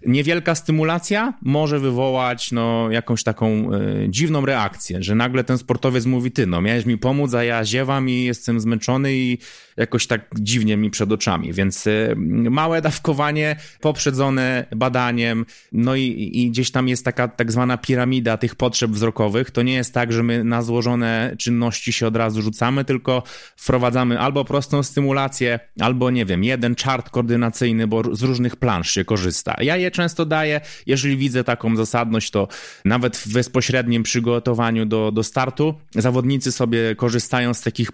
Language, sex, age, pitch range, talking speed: Polish, male, 30-49, 115-135 Hz, 160 wpm